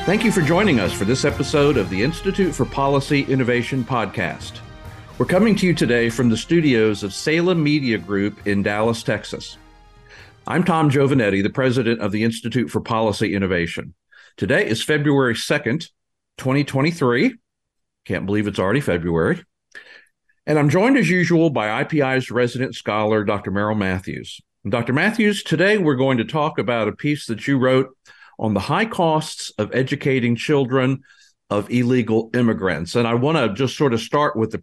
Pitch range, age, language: 110-150 Hz, 50-69, English